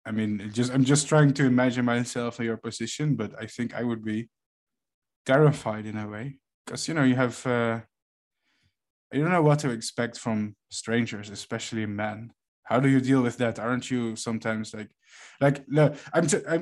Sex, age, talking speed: male, 20-39, 185 wpm